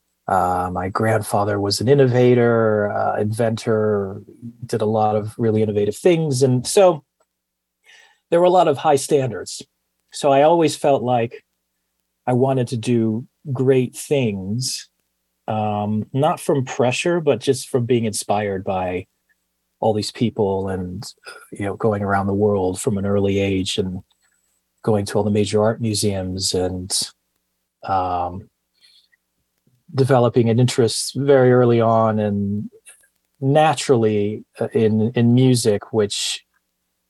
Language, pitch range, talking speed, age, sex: English, 95-125 Hz, 130 wpm, 30-49, male